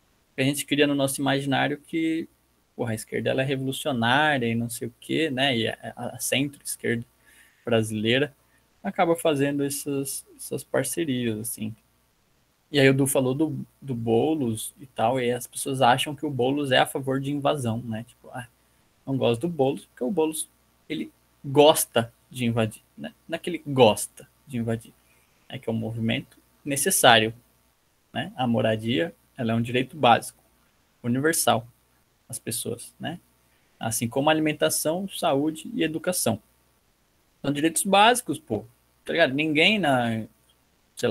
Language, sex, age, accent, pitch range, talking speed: Portuguese, male, 20-39, Brazilian, 110-150 Hz, 155 wpm